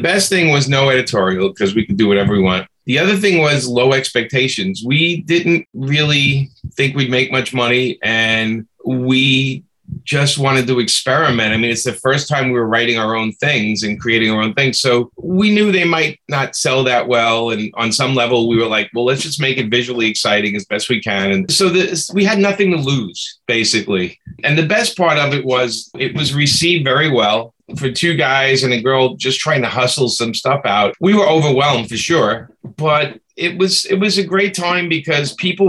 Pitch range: 120-155 Hz